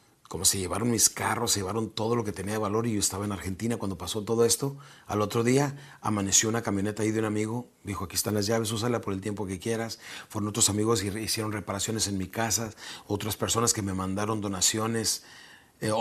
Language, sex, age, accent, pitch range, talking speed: Spanish, male, 40-59, Mexican, 105-130 Hz, 225 wpm